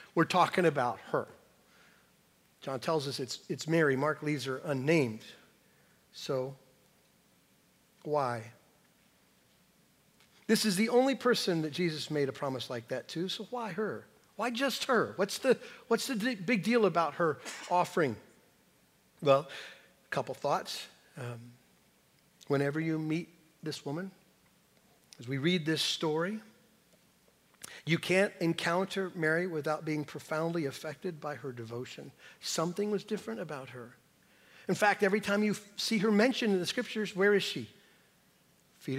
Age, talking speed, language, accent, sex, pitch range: 50-69, 140 wpm, English, American, male, 145-205 Hz